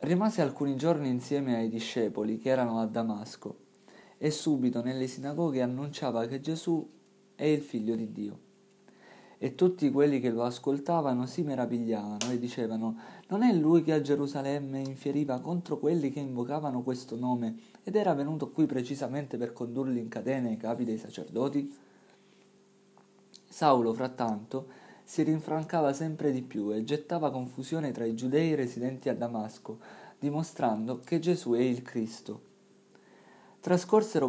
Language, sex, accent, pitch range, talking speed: Italian, male, native, 120-155 Hz, 140 wpm